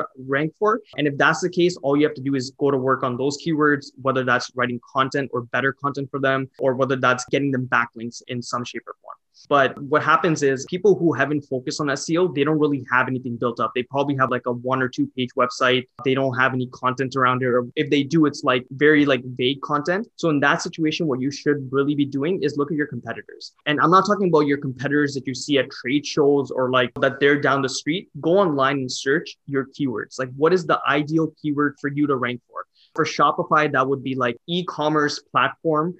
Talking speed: 240 wpm